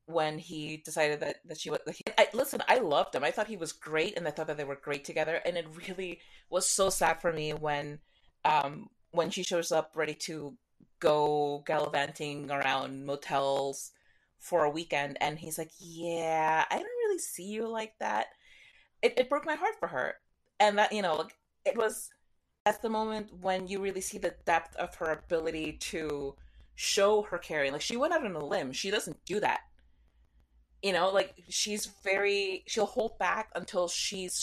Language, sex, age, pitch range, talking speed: English, female, 30-49, 150-200 Hz, 195 wpm